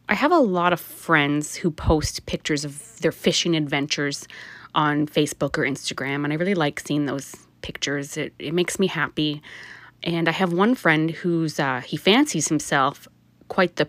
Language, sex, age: English, female, 20-39